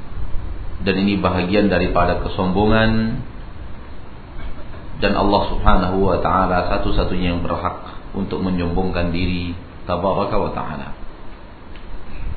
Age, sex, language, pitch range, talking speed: 50-69, male, Malay, 90-110 Hz, 90 wpm